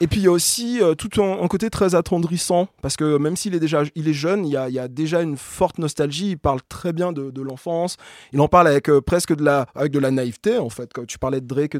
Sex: male